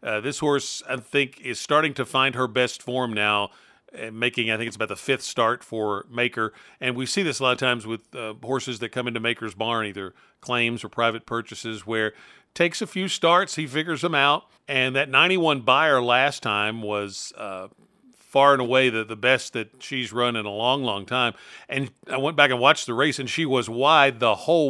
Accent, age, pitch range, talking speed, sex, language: American, 40-59, 110-135 Hz, 215 wpm, male, English